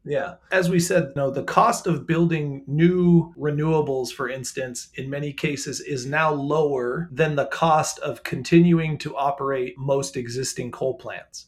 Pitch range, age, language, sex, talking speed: 135-170 Hz, 30-49, English, male, 160 wpm